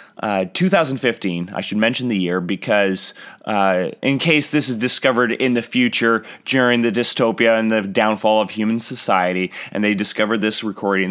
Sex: male